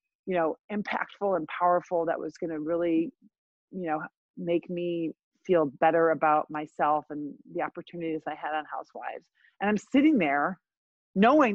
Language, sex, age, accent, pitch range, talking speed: English, female, 30-49, American, 160-210 Hz, 155 wpm